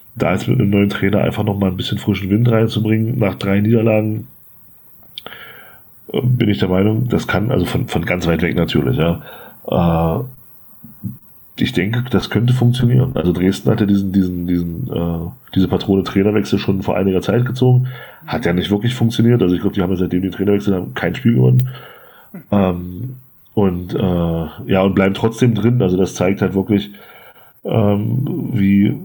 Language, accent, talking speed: German, German, 175 wpm